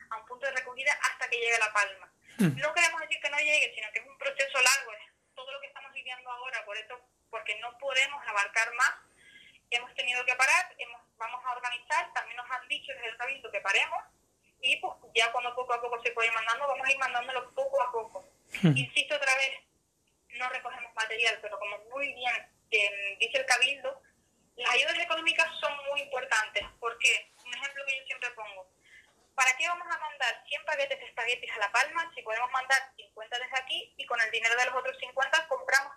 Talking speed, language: 205 wpm, Spanish